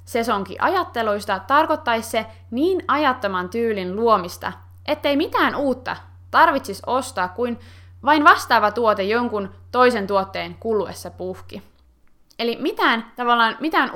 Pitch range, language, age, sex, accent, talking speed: 190-260 Hz, Finnish, 20-39, female, native, 110 wpm